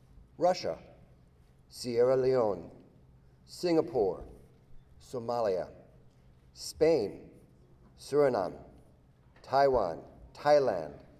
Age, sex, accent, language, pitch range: 50-69, male, American, English, 115-150 Hz